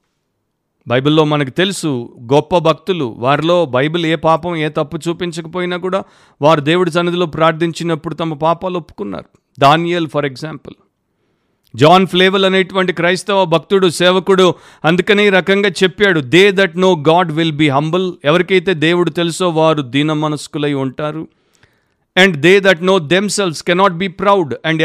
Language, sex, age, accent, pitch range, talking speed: Telugu, male, 50-69, native, 150-185 Hz, 135 wpm